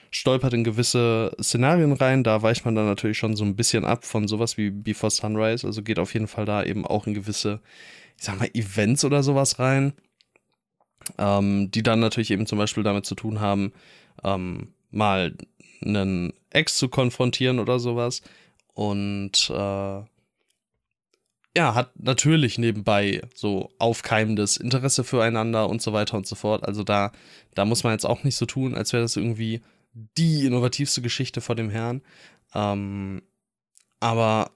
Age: 20-39